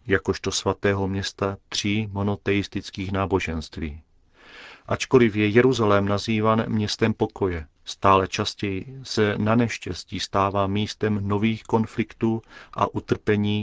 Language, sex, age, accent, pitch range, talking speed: Czech, male, 40-59, native, 95-110 Hz, 100 wpm